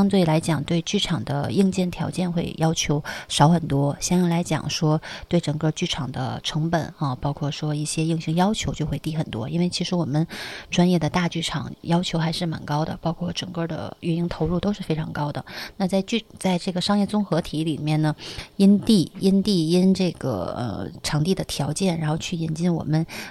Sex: female